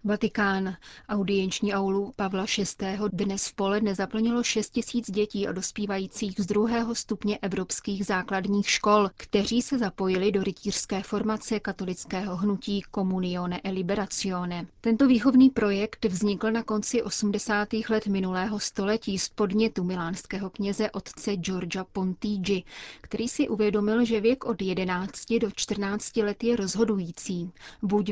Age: 30-49